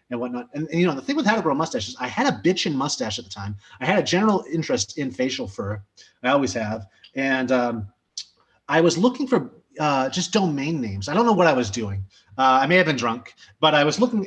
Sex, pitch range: male, 120-165 Hz